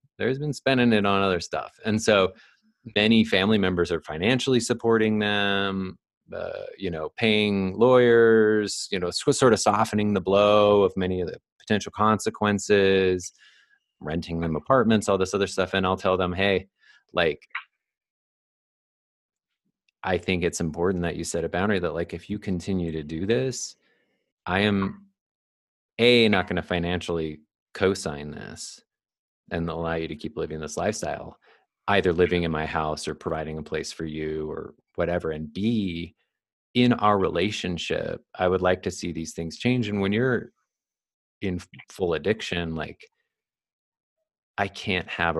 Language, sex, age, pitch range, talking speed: English, male, 30-49, 85-105 Hz, 155 wpm